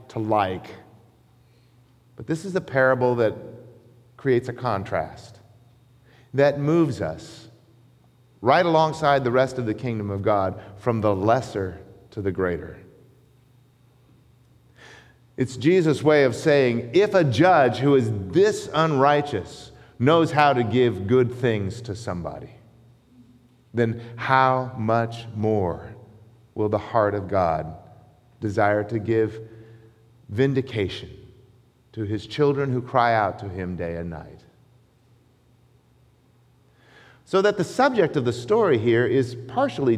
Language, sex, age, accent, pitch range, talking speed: English, male, 40-59, American, 110-130 Hz, 125 wpm